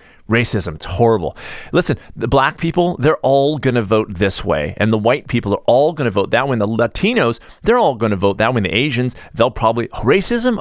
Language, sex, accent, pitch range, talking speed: English, male, American, 95-125 Hz, 230 wpm